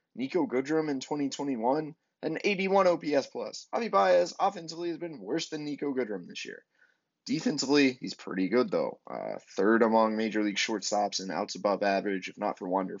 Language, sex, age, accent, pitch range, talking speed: English, male, 20-39, American, 105-145 Hz, 175 wpm